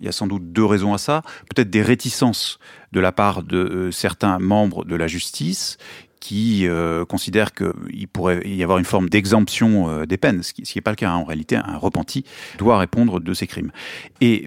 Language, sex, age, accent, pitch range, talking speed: French, male, 30-49, French, 90-110 Hz, 210 wpm